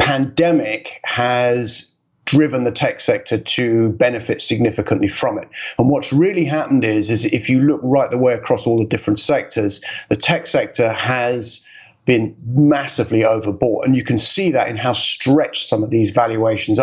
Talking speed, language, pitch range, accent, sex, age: 170 wpm, English, 110-135 Hz, British, male, 30-49